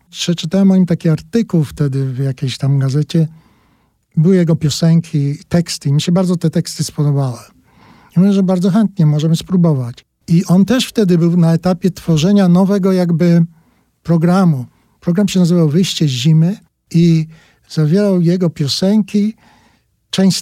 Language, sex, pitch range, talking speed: Polish, male, 150-180 Hz, 145 wpm